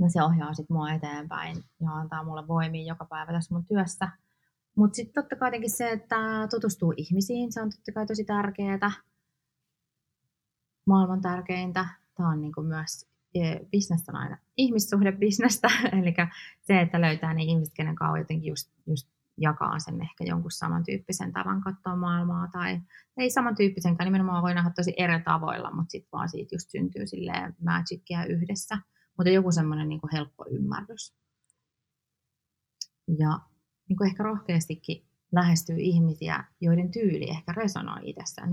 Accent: native